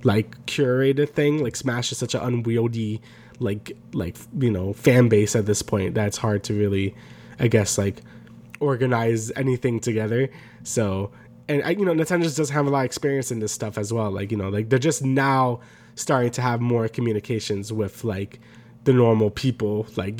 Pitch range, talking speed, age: 110-125 Hz, 190 wpm, 20-39